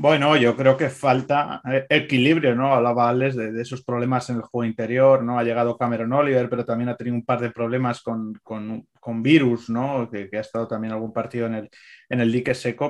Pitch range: 115-130 Hz